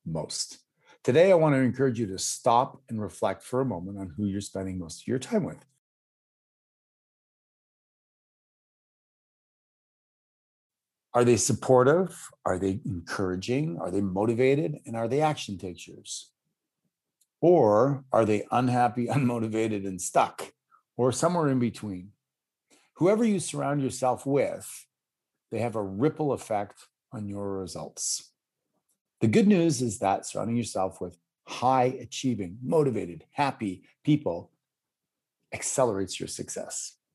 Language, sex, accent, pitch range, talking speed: English, male, American, 100-130 Hz, 125 wpm